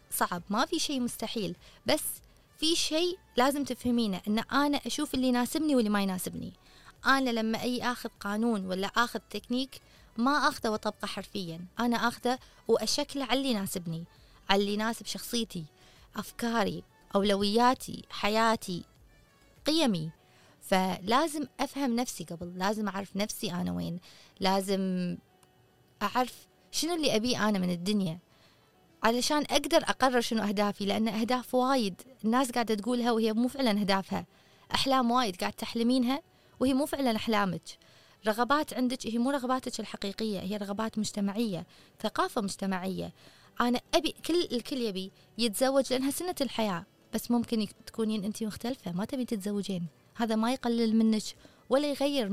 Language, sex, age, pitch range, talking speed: Arabic, female, 20-39, 200-255 Hz, 135 wpm